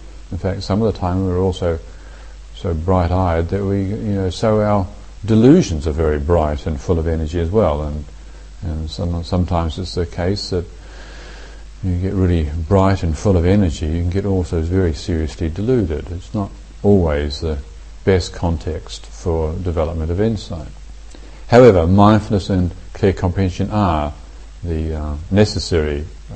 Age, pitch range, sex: 50-69, 75-95 Hz, male